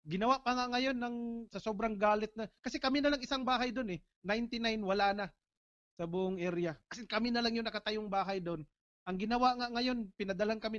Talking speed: 205 wpm